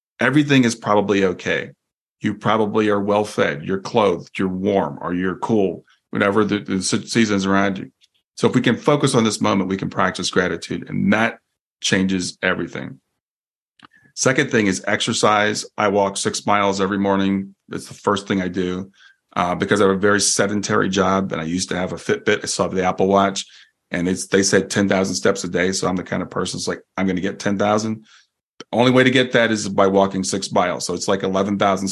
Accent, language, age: American, English, 30-49